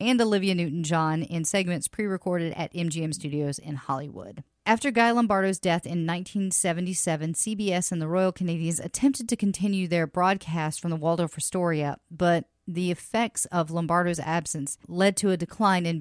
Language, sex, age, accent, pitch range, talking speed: English, female, 40-59, American, 160-185 Hz, 155 wpm